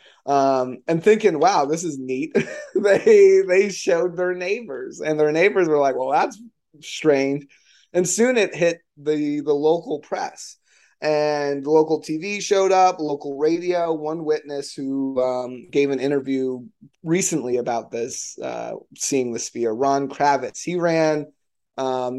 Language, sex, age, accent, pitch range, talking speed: English, male, 20-39, American, 130-160 Hz, 145 wpm